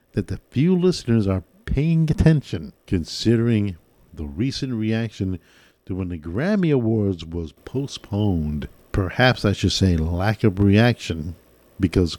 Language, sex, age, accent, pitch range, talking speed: English, male, 60-79, American, 90-120 Hz, 130 wpm